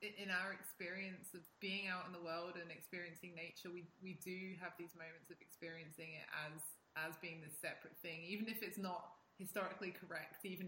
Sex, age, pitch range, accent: female, 20-39, 165-190 Hz, British